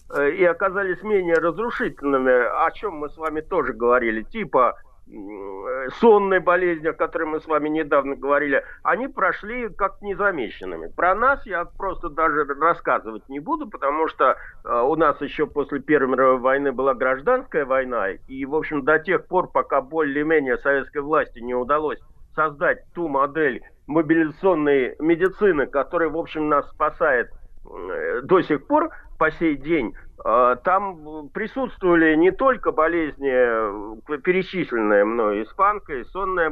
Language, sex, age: Russian, male, 50-69